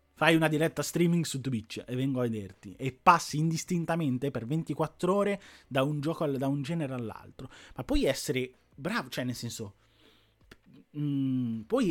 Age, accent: 30-49, native